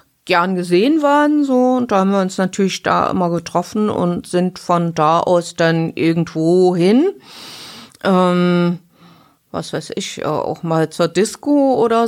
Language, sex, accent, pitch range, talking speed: German, female, German, 165-205 Hz, 150 wpm